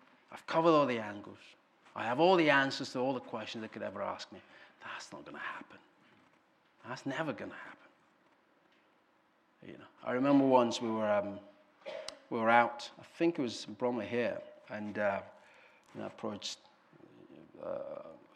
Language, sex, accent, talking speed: English, male, British, 170 wpm